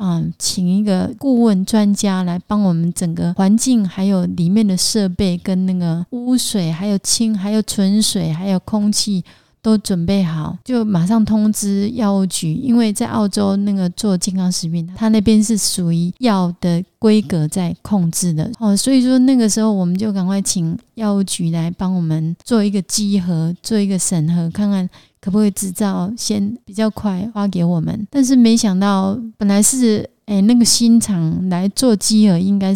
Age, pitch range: 30-49, 180-215 Hz